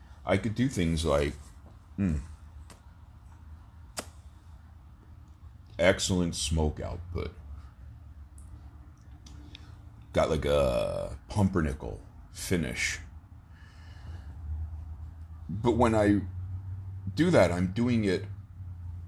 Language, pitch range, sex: English, 80-100 Hz, male